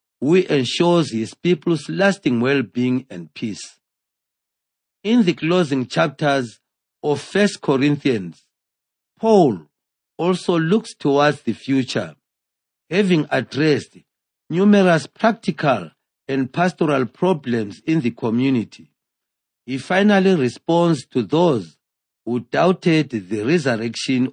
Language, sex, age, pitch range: English, male, 50-69, 125-175 Hz